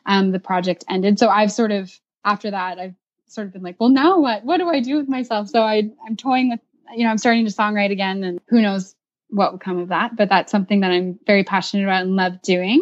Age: 10-29